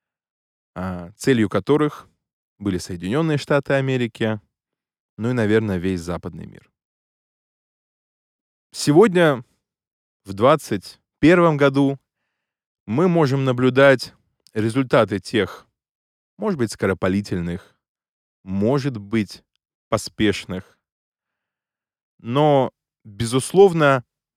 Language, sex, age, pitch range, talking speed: Russian, male, 20-39, 95-140 Hz, 70 wpm